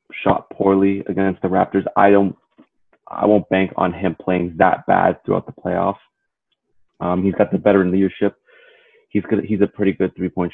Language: English